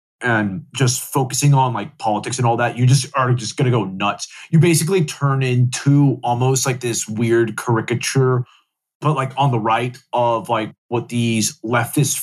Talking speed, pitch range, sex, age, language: 175 wpm, 110-130 Hz, male, 20-39, English